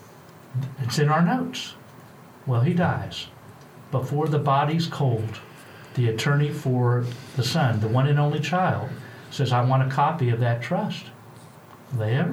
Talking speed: 145 wpm